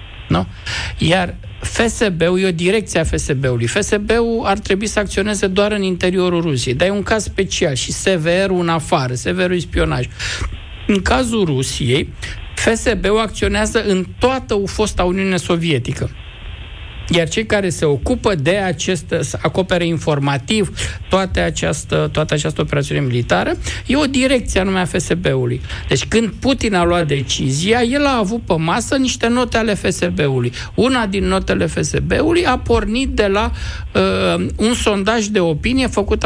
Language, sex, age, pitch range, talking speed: Romanian, male, 60-79, 150-220 Hz, 145 wpm